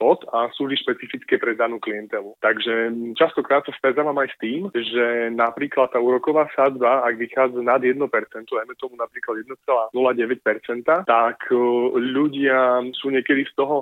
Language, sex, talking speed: Slovak, male, 150 wpm